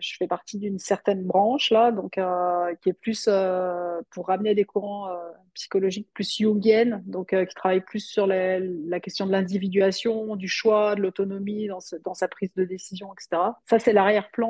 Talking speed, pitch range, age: 195 wpm, 195-230 Hz, 30-49